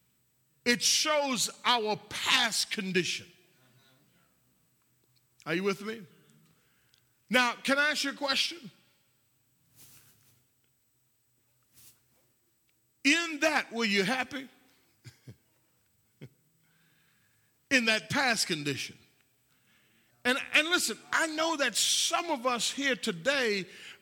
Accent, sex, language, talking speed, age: American, male, English, 90 wpm, 50-69